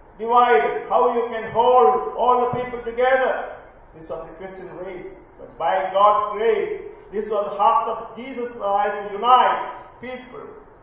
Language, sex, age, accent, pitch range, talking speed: English, male, 40-59, Indian, 160-230 Hz, 155 wpm